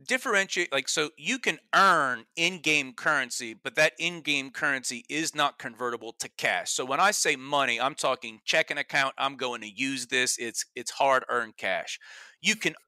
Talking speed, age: 170 wpm, 30-49